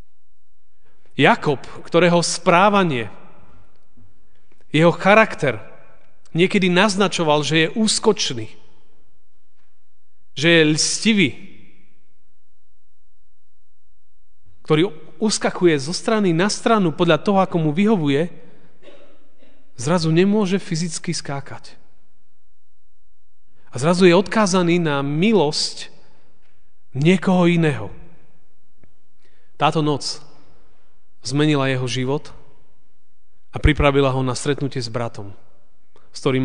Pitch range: 120-170 Hz